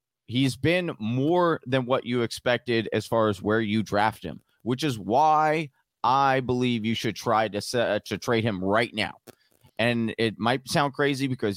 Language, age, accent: English, 30-49, American